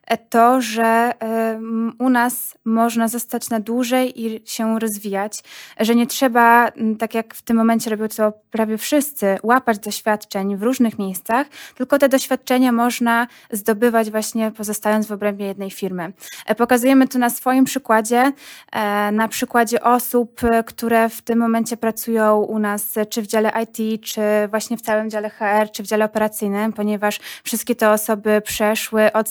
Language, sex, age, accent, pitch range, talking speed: Polish, female, 20-39, native, 215-245 Hz, 150 wpm